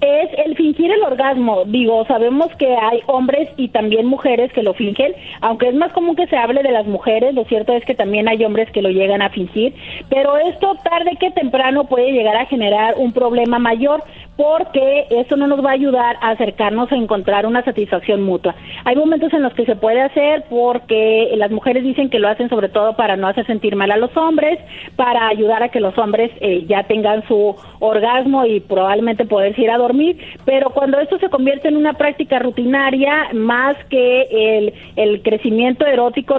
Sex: female